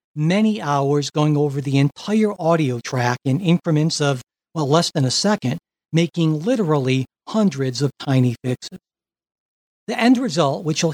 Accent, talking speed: American, 150 wpm